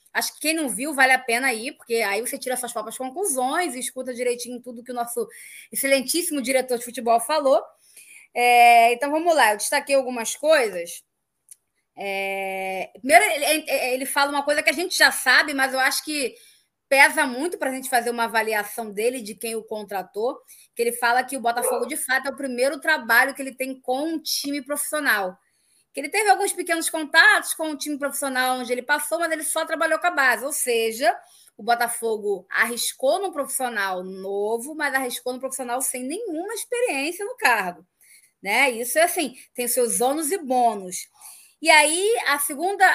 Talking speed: 185 wpm